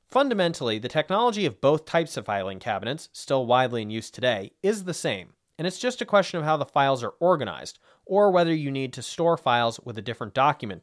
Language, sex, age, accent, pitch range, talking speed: English, male, 30-49, American, 115-170 Hz, 215 wpm